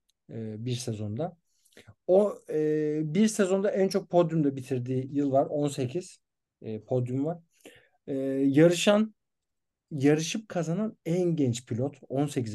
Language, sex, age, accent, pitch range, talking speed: Turkish, male, 50-69, native, 120-170 Hz, 115 wpm